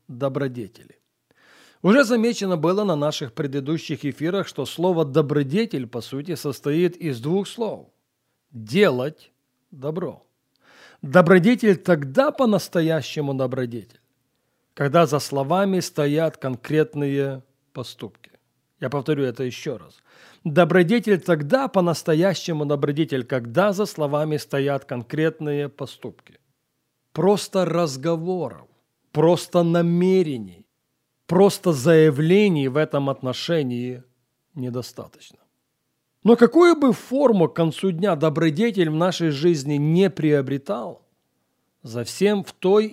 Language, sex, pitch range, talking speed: Russian, male, 140-185 Hz, 100 wpm